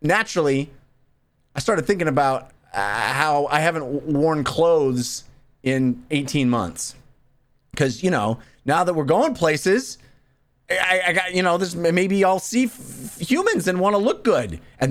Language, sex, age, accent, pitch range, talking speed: English, male, 30-49, American, 120-185 Hz, 165 wpm